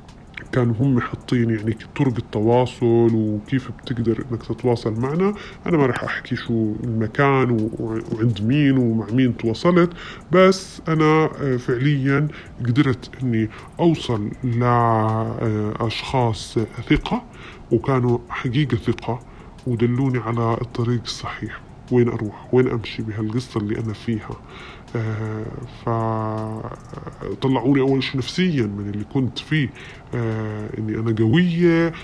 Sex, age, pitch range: female, 20-39, 115-140 Hz